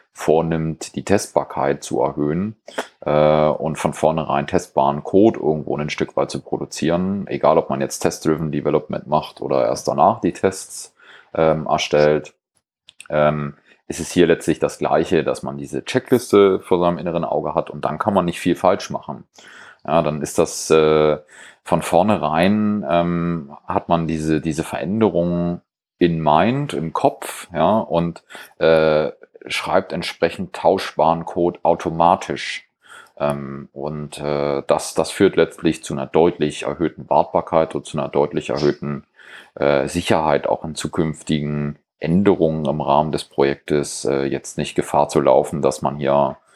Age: 30-49